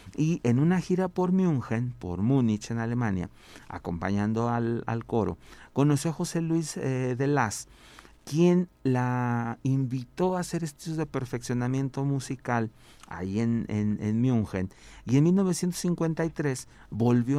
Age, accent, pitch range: 50-69, Mexican, 100-135 Hz